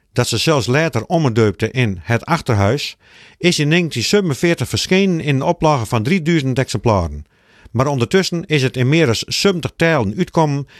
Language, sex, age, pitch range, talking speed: Dutch, male, 50-69, 115-160 Hz, 155 wpm